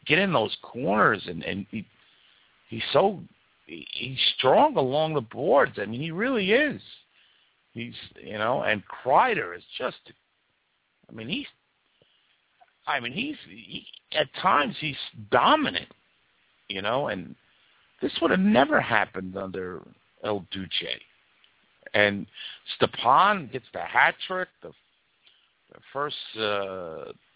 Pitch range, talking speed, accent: 105-150 Hz, 140 wpm, American